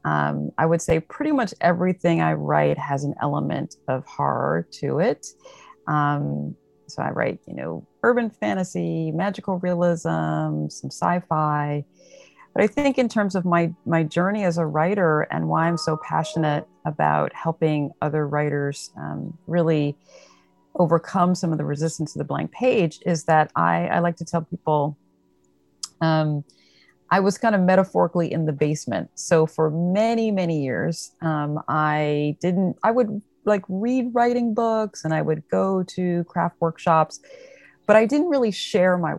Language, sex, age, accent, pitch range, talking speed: English, female, 40-59, American, 150-190 Hz, 160 wpm